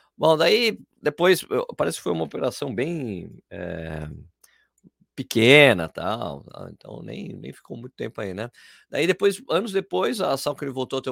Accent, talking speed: Brazilian, 175 wpm